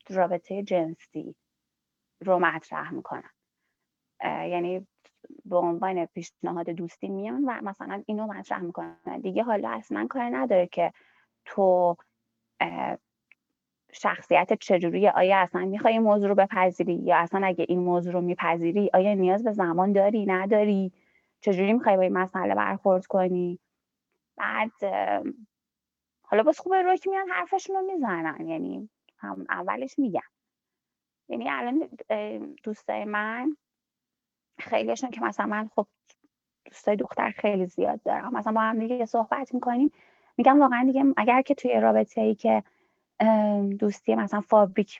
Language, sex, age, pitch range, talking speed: Persian, female, 20-39, 180-250 Hz, 130 wpm